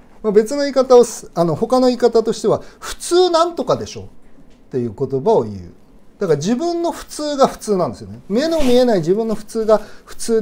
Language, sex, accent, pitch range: Japanese, male, native, 165-255 Hz